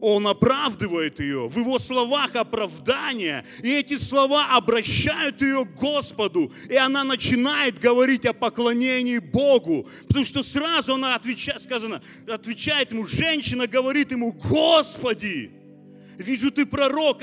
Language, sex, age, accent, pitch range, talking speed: Russian, male, 30-49, native, 255-315 Hz, 125 wpm